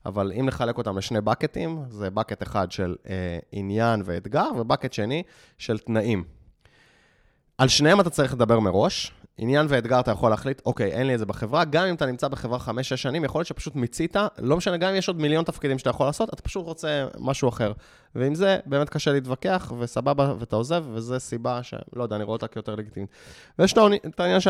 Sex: male